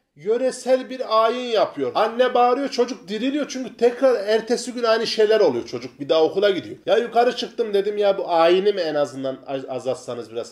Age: 40-59